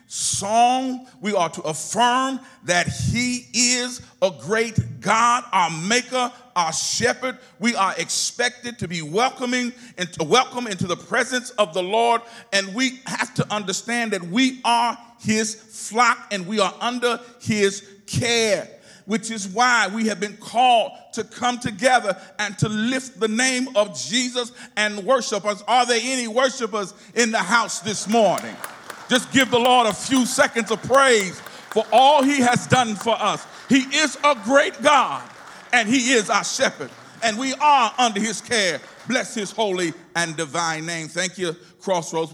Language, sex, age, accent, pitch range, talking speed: English, male, 40-59, American, 185-245 Hz, 165 wpm